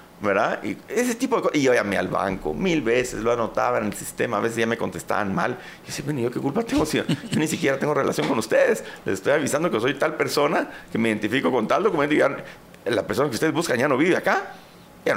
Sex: male